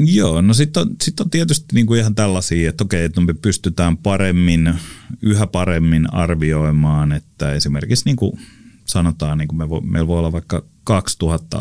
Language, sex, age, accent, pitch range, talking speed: Finnish, male, 30-49, native, 80-105 Hz, 125 wpm